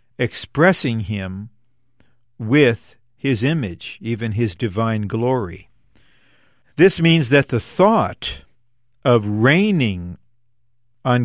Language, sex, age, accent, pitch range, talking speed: English, male, 50-69, American, 110-130 Hz, 90 wpm